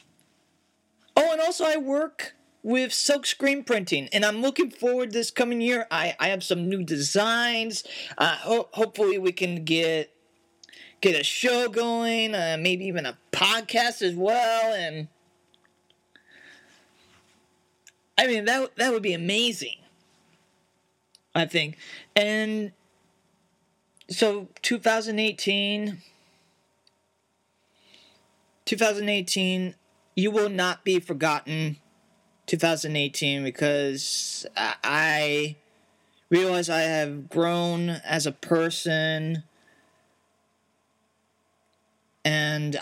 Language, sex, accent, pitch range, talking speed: English, male, American, 160-220 Hz, 100 wpm